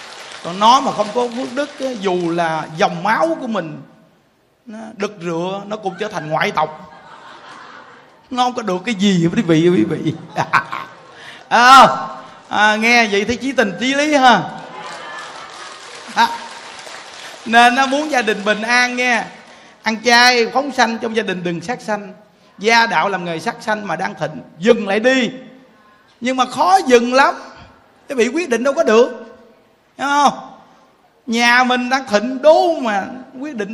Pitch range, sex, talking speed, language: 190-245 Hz, male, 160 wpm, Vietnamese